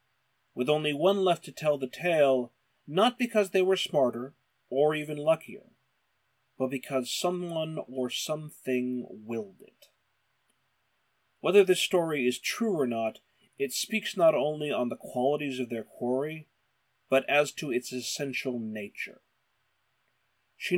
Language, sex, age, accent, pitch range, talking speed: English, male, 30-49, American, 120-155 Hz, 135 wpm